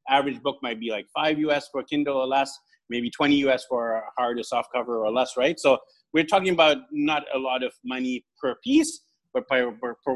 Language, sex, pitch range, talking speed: English, male, 135-180 Hz, 215 wpm